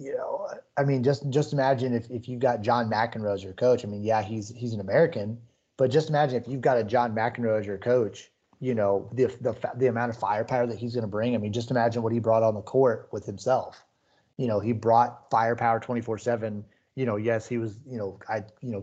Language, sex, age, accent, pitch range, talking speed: English, male, 30-49, American, 105-120 Hz, 240 wpm